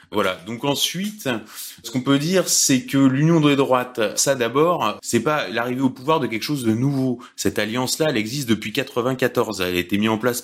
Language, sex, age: French, male, 30-49